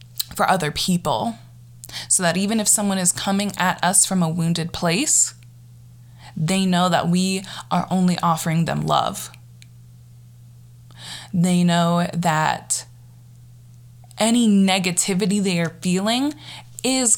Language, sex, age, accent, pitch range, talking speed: English, female, 20-39, American, 120-185 Hz, 120 wpm